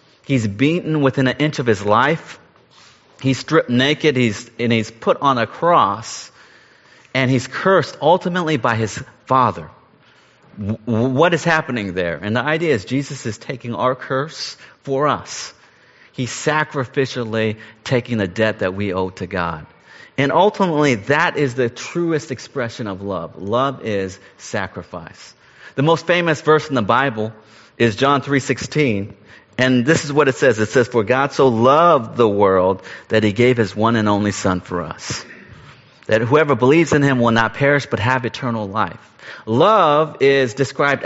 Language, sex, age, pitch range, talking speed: English, male, 40-59, 110-145 Hz, 165 wpm